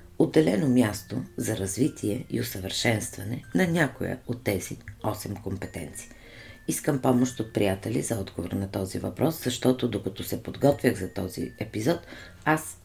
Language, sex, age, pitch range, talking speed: Bulgarian, female, 50-69, 95-125 Hz, 135 wpm